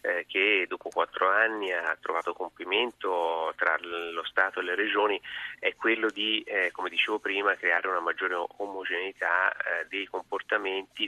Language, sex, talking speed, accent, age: Italian, male, 145 wpm, native, 30-49